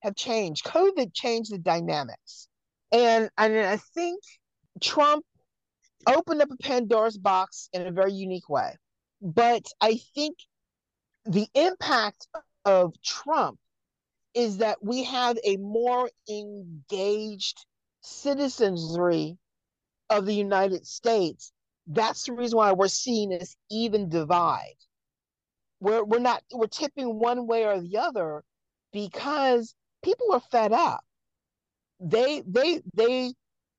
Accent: American